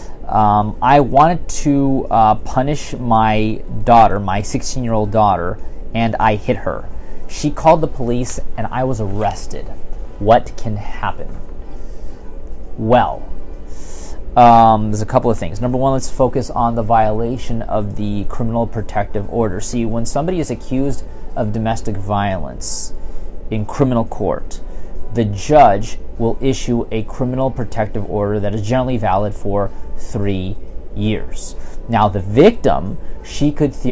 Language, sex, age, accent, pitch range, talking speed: English, male, 30-49, American, 105-130 Hz, 135 wpm